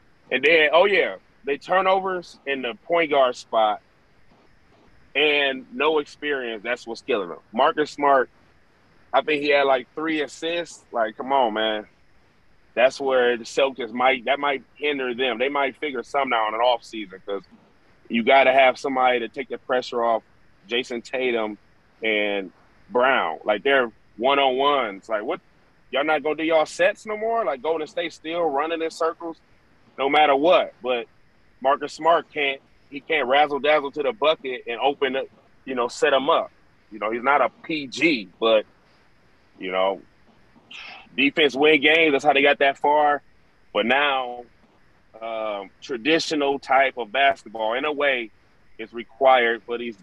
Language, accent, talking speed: English, American, 165 wpm